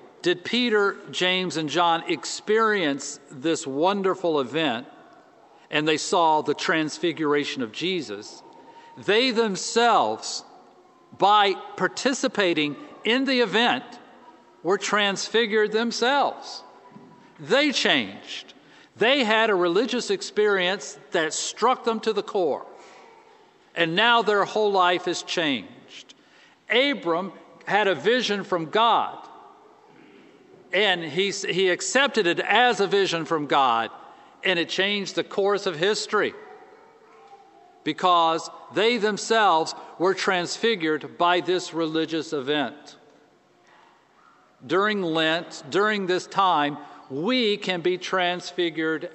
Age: 50-69